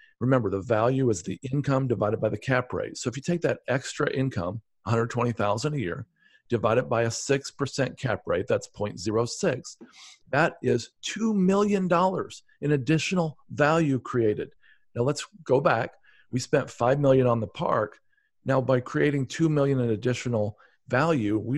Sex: male